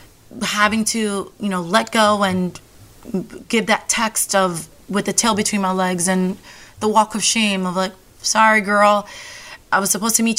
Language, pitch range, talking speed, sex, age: English, 190-220 Hz, 180 wpm, female, 20-39